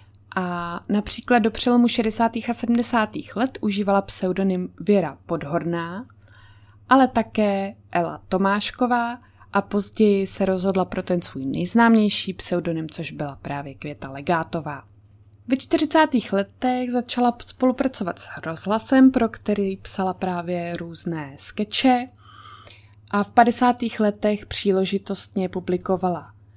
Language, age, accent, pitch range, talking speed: Czech, 20-39, native, 160-210 Hz, 110 wpm